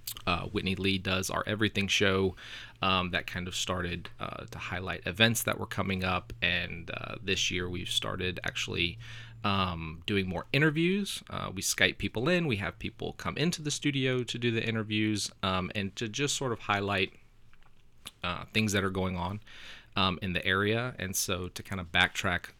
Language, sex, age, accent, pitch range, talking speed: English, male, 30-49, American, 95-110 Hz, 185 wpm